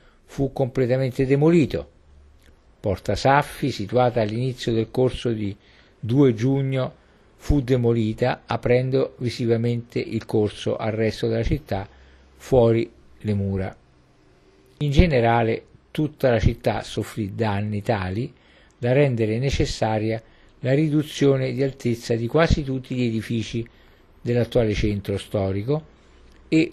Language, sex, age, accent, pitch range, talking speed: Italian, male, 50-69, native, 100-130 Hz, 110 wpm